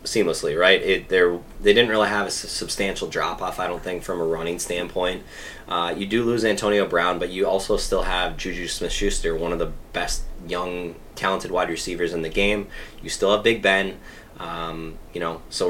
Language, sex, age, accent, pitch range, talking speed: English, male, 20-39, American, 90-105 Hz, 205 wpm